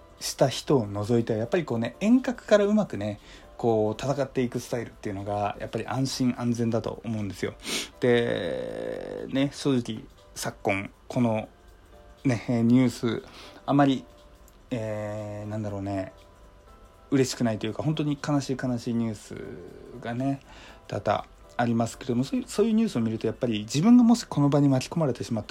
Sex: male